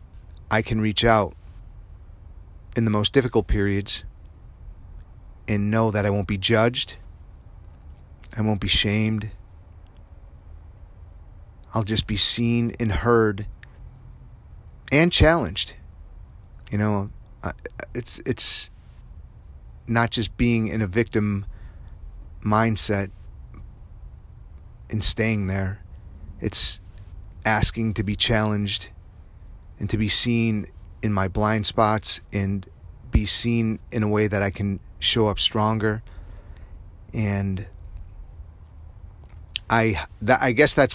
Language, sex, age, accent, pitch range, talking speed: English, male, 30-49, American, 85-110 Hz, 105 wpm